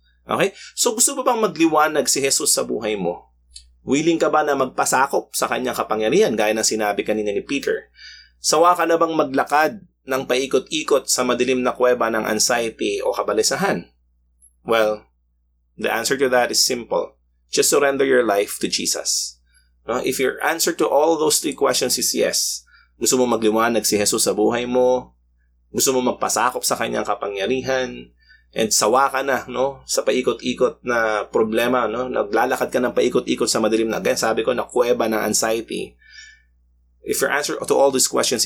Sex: male